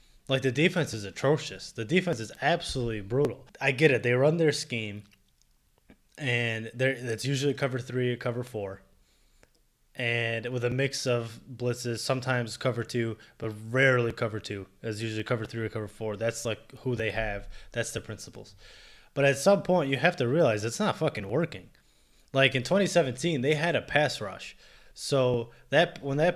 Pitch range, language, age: 115-145 Hz, English, 20-39